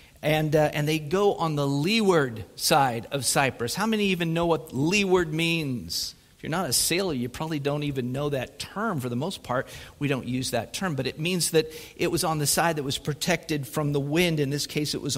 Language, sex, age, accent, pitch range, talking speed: English, male, 50-69, American, 130-165 Hz, 235 wpm